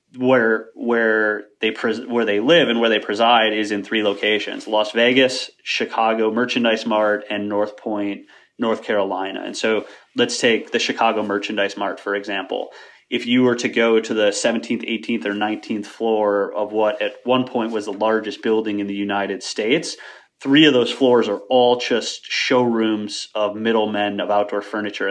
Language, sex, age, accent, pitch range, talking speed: English, male, 30-49, American, 105-115 Hz, 175 wpm